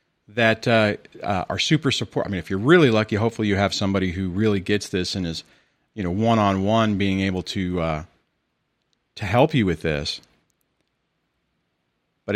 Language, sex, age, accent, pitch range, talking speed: English, male, 40-59, American, 95-115 Hz, 170 wpm